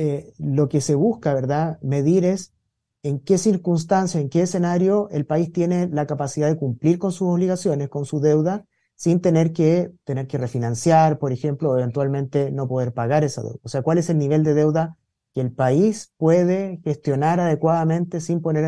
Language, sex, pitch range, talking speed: Spanish, male, 140-175 Hz, 185 wpm